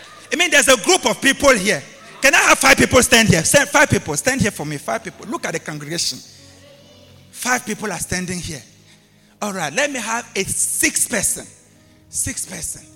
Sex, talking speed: male, 200 wpm